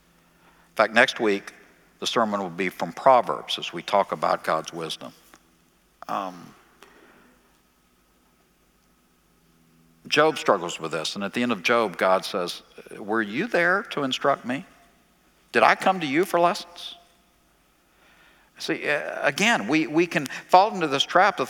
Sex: male